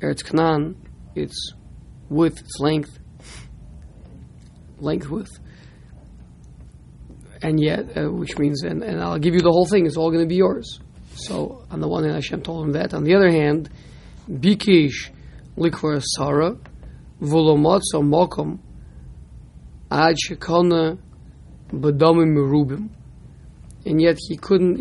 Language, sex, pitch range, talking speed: English, male, 130-170 Hz, 105 wpm